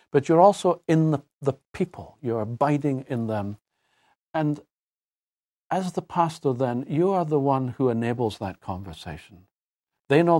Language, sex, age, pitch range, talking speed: English, male, 60-79, 105-145 Hz, 150 wpm